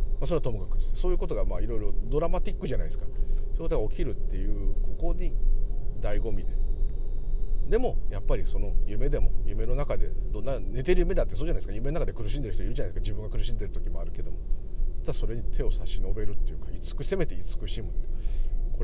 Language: Japanese